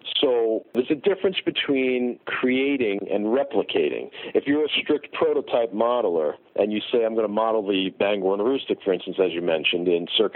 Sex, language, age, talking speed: male, English, 50-69, 185 wpm